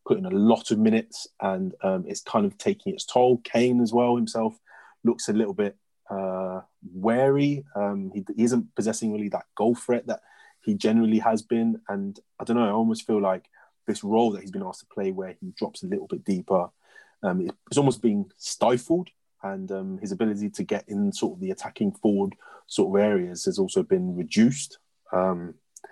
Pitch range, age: 100-120 Hz, 30-49